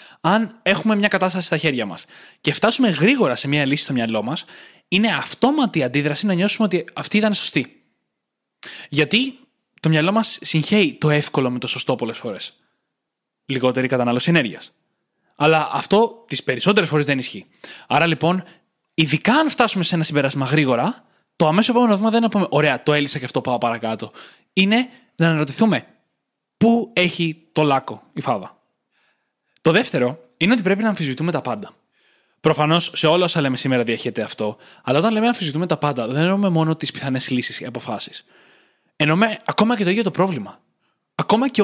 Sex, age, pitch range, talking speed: male, 20-39, 145-210 Hz, 175 wpm